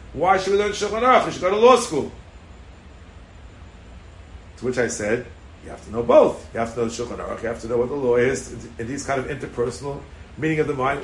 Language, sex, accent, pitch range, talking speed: English, male, American, 85-130 Hz, 240 wpm